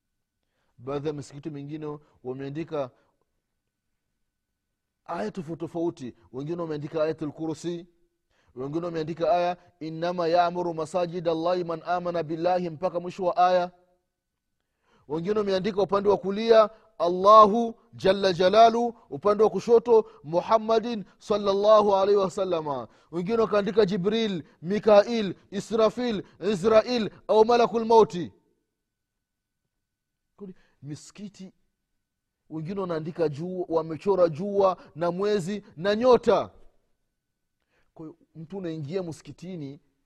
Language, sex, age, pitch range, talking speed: Swahili, male, 30-49, 145-205 Hz, 95 wpm